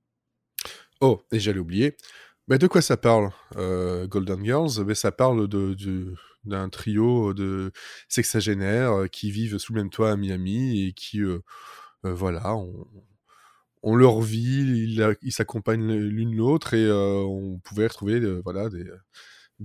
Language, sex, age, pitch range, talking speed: French, male, 20-39, 100-135 Hz, 170 wpm